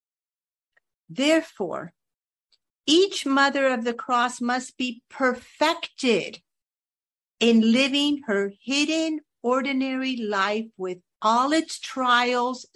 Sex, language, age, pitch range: female, English, 50-69, 190-255 Hz